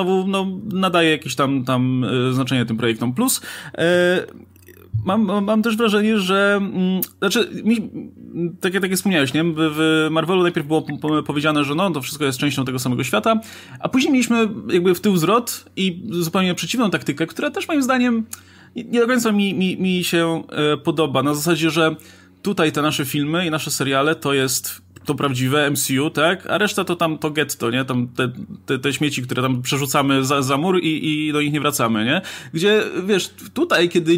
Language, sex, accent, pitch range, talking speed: Polish, male, native, 135-185 Hz, 175 wpm